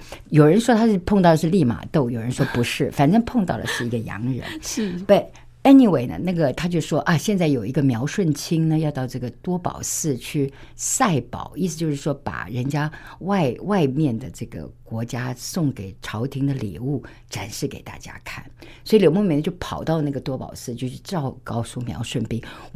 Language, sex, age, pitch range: Chinese, female, 50-69, 125-190 Hz